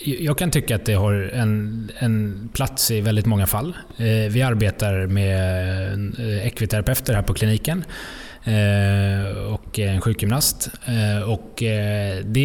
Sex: male